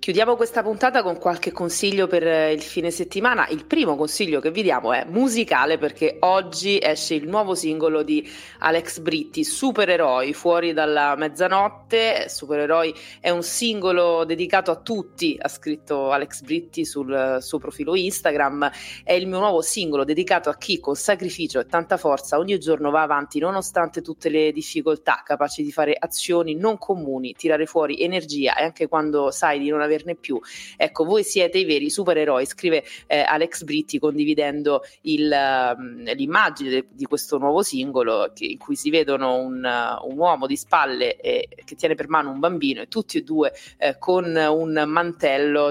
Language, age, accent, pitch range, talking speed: Italian, 30-49, native, 145-190 Hz, 170 wpm